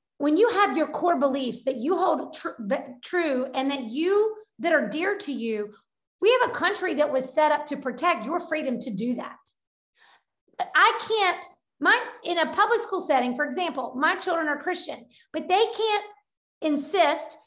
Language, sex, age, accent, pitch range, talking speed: English, female, 40-59, American, 295-385 Hz, 180 wpm